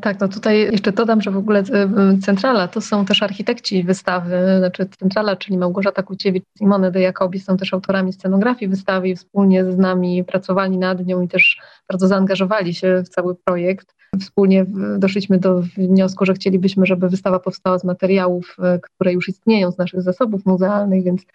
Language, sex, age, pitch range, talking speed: Polish, female, 30-49, 185-200 Hz, 170 wpm